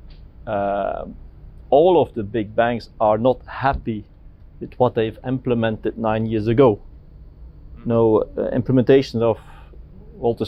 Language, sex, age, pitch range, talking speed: English, male, 30-49, 105-135 Hz, 120 wpm